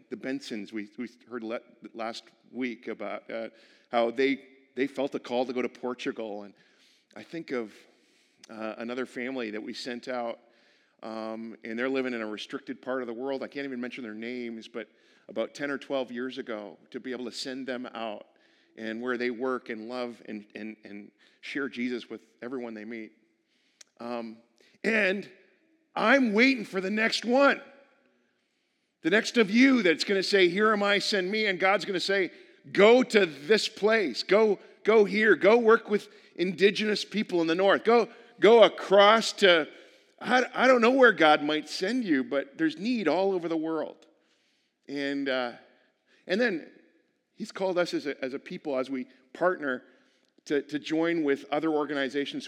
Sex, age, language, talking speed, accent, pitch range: male, 40-59, English, 180 wpm, American, 120-200 Hz